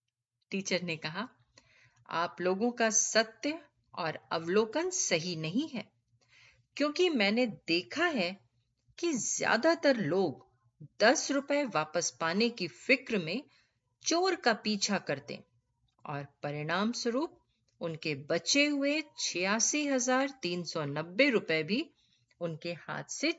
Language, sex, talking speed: Hindi, female, 120 wpm